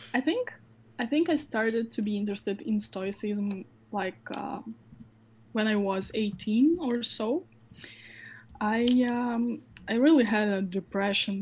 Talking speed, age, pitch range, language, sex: 130 wpm, 10-29, 205-240 Hz, English, female